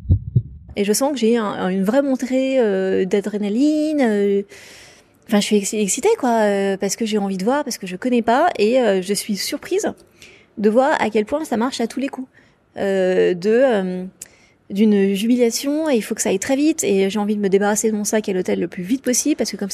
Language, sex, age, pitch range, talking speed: French, female, 30-49, 200-245 Hz, 215 wpm